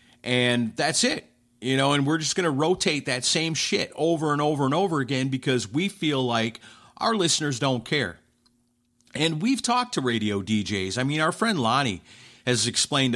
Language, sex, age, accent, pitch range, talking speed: English, male, 40-59, American, 120-155 Hz, 185 wpm